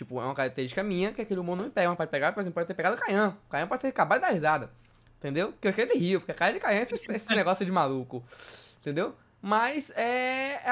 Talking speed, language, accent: 265 wpm, Portuguese, Brazilian